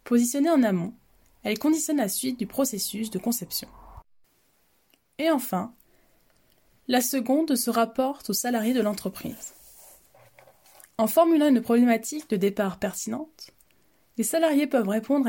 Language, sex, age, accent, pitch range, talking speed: French, female, 20-39, French, 205-265 Hz, 125 wpm